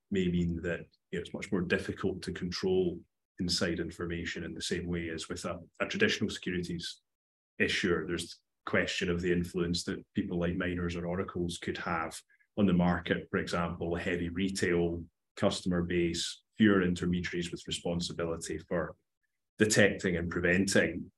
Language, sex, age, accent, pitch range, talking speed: English, male, 20-39, British, 85-100 Hz, 155 wpm